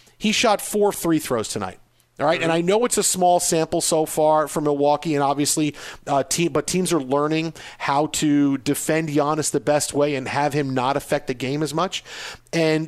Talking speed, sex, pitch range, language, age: 200 wpm, male, 145-175 Hz, English, 40-59